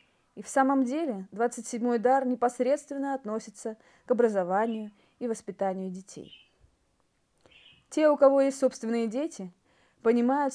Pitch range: 210-260 Hz